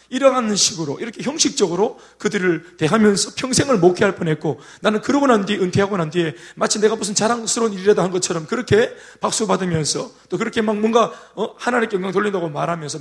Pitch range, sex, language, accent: 160-230 Hz, male, Korean, native